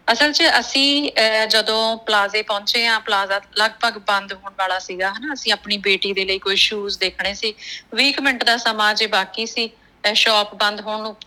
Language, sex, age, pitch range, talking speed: Punjabi, female, 20-39, 200-240 Hz, 180 wpm